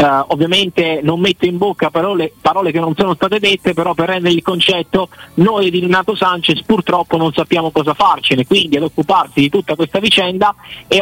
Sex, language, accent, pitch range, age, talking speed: male, Italian, native, 155-195 Hz, 30-49, 190 wpm